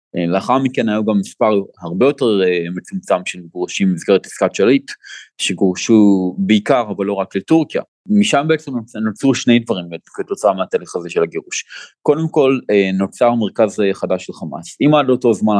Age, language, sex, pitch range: 30-49, Hebrew, male, 95-145 Hz